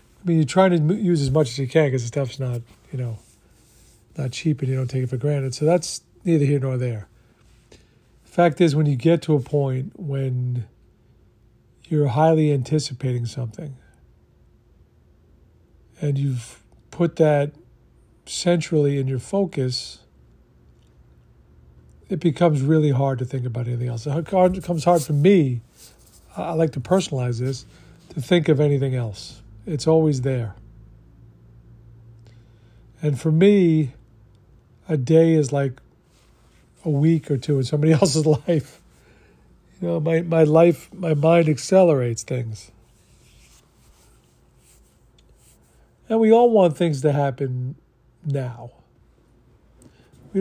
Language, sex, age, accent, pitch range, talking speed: English, male, 50-69, American, 120-160 Hz, 135 wpm